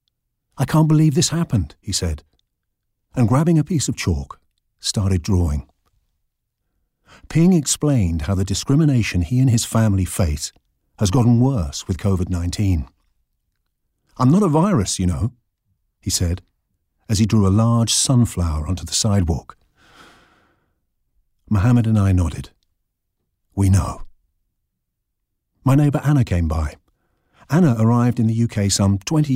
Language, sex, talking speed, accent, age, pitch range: English, male, 135 wpm, British, 50-69, 85-115 Hz